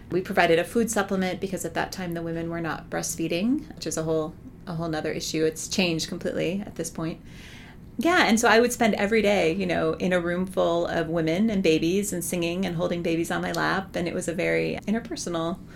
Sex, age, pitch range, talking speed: female, 30-49, 165-195 Hz, 230 wpm